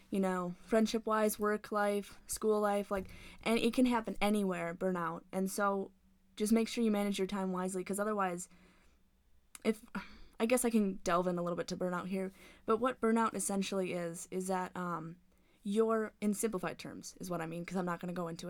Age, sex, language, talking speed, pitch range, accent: 10-29, female, English, 200 wpm, 185-215 Hz, American